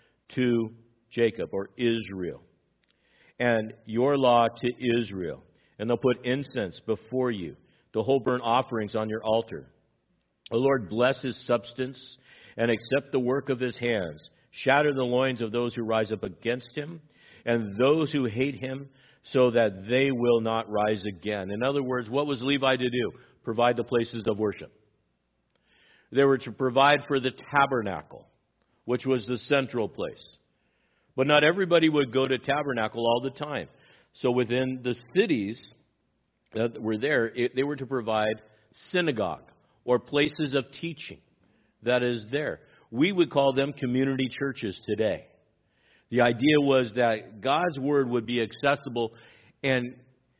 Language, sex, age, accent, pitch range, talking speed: English, male, 50-69, American, 115-135 Hz, 150 wpm